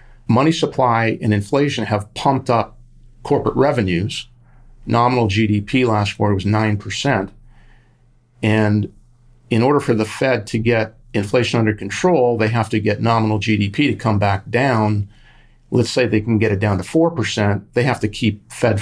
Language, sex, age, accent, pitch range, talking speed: English, male, 40-59, American, 105-120 Hz, 165 wpm